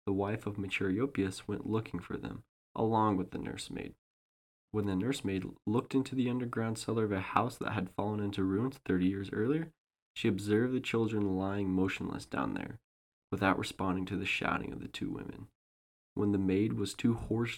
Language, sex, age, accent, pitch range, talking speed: English, male, 20-39, American, 95-105 Hz, 185 wpm